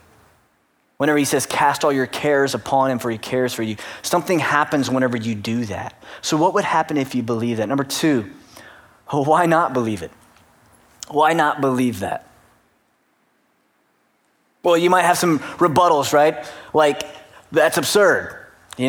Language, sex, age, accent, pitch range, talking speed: English, male, 20-39, American, 125-165 Hz, 155 wpm